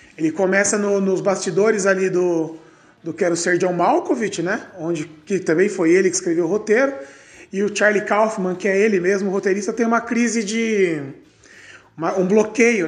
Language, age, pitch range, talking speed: Portuguese, 20-39, 170-225 Hz, 185 wpm